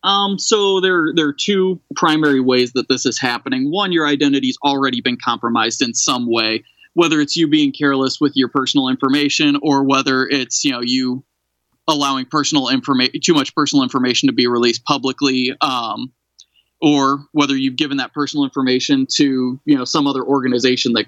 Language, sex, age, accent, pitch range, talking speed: English, male, 20-39, American, 130-160 Hz, 175 wpm